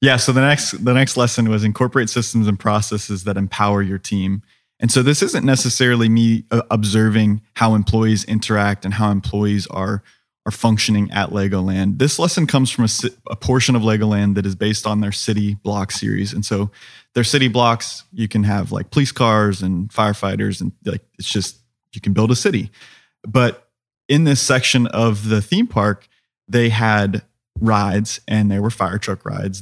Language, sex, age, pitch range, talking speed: English, male, 20-39, 100-120 Hz, 180 wpm